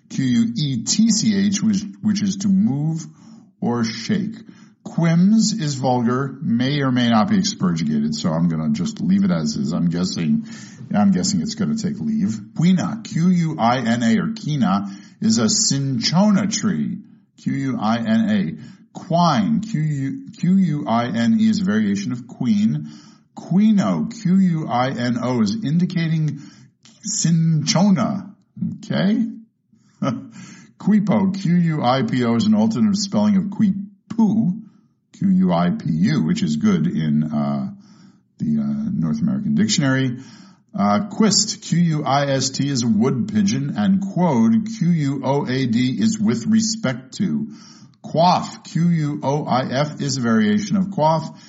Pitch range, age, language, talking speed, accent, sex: 150-215 Hz, 50-69, English, 110 wpm, American, male